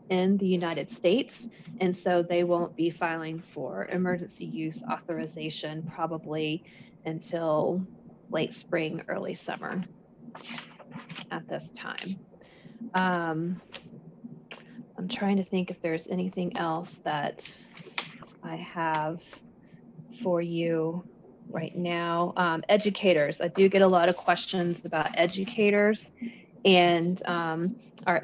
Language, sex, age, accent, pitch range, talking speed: English, female, 30-49, American, 170-195 Hz, 115 wpm